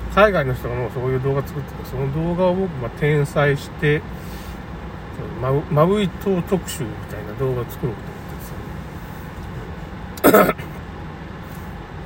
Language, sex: Japanese, male